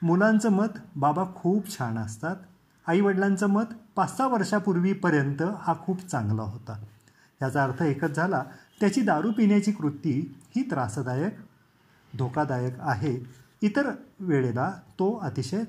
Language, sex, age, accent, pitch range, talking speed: Marathi, male, 30-49, native, 140-205 Hz, 120 wpm